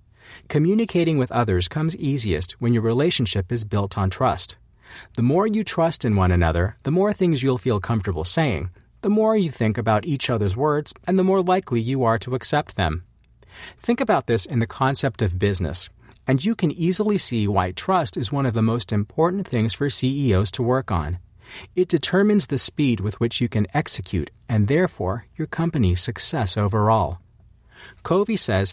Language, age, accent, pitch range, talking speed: English, 40-59, American, 100-155 Hz, 180 wpm